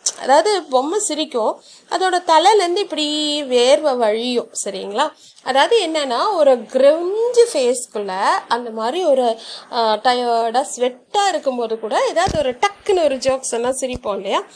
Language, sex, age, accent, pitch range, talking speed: Tamil, female, 30-49, native, 240-310 Hz, 115 wpm